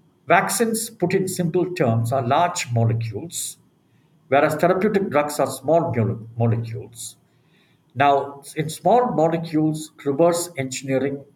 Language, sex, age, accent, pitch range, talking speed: English, male, 50-69, Indian, 125-165 Hz, 110 wpm